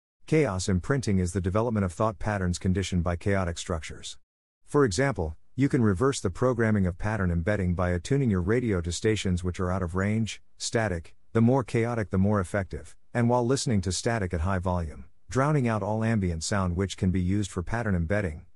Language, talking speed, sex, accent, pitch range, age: English, 195 wpm, male, American, 90-115 Hz, 50-69